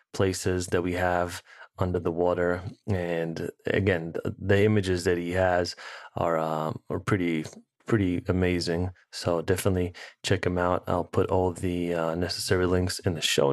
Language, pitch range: English, 90-105 Hz